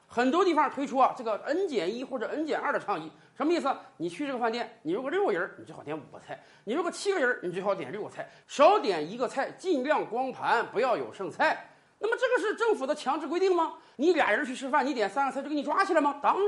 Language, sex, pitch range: Chinese, male, 235-370 Hz